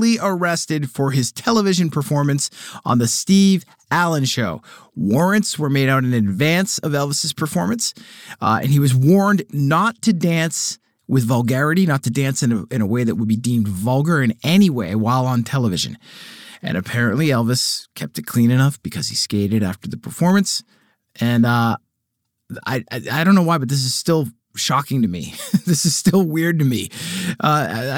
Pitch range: 115-160 Hz